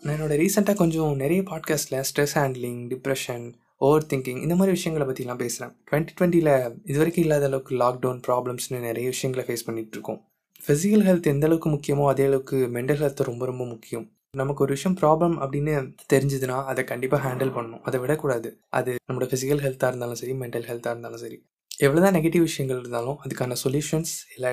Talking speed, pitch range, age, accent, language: 170 wpm, 125-155 Hz, 20-39, native, Tamil